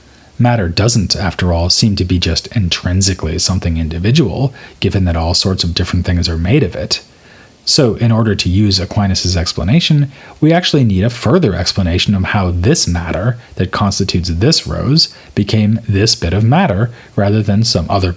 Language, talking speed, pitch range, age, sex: English, 170 wpm, 90-120 Hz, 30-49, male